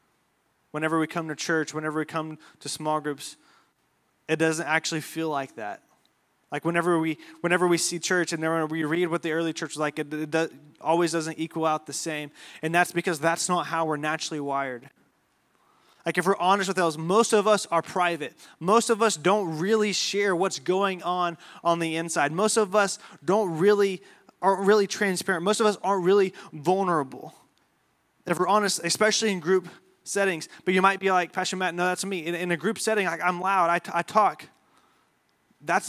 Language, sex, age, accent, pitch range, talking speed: English, male, 20-39, American, 165-195 Hz, 200 wpm